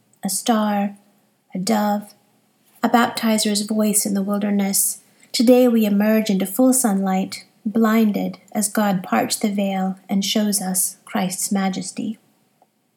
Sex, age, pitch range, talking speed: female, 30-49, 195-225 Hz, 125 wpm